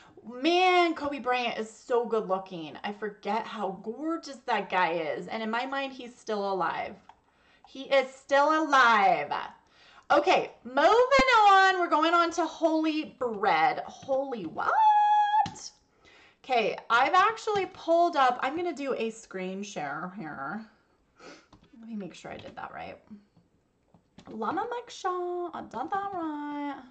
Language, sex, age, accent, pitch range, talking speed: English, female, 30-49, American, 220-315 Hz, 140 wpm